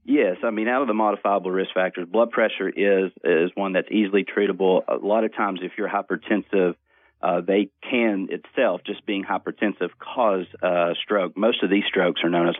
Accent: American